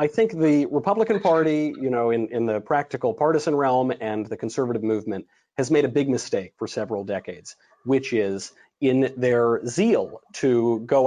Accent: American